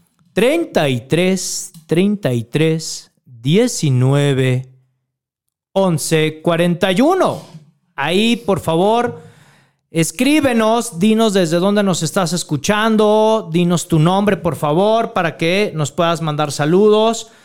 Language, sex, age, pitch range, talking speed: Spanish, male, 40-59, 155-195 Hz, 90 wpm